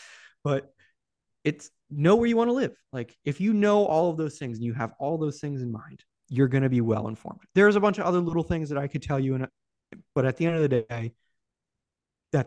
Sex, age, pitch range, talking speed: male, 20-39, 120-160 Hz, 250 wpm